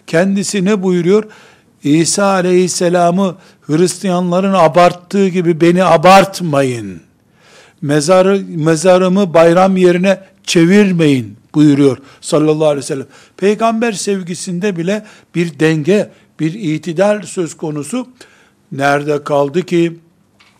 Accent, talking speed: native, 90 wpm